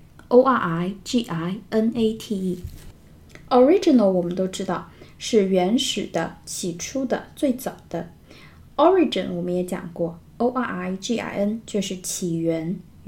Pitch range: 180-225 Hz